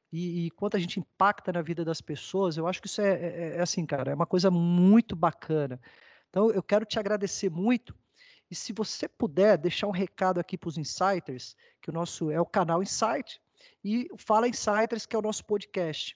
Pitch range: 180-215 Hz